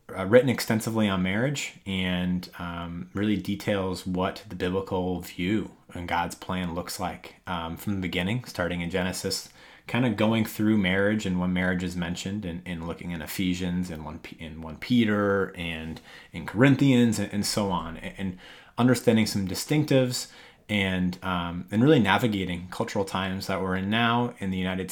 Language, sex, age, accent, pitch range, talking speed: English, male, 30-49, American, 90-110 Hz, 170 wpm